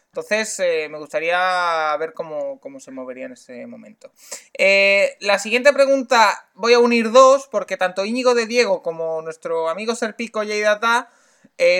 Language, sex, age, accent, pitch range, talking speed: Spanish, male, 20-39, Spanish, 185-260 Hz, 160 wpm